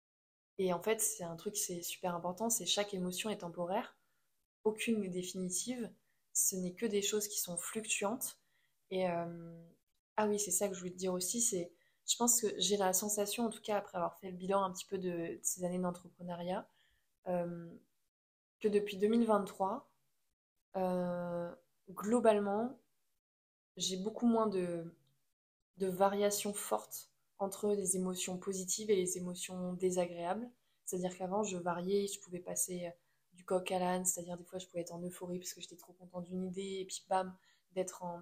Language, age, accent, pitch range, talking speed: French, 20-39, French, 180-205 Hz, 175 wpm